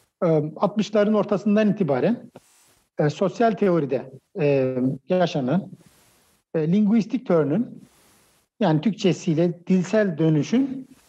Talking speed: 80 wpm